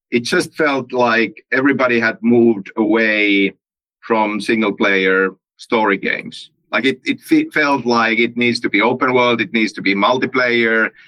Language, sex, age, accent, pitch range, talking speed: English, male, 50-69, Finnish, 110-145 Hz, 160 wpm